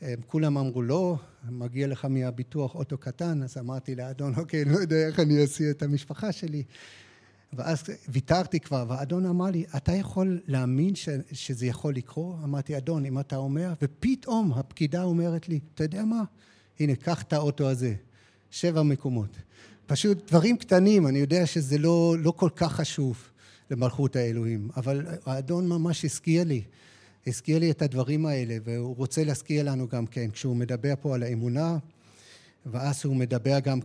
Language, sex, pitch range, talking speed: Hebrew, male, 125-165 Hz, 160 wpm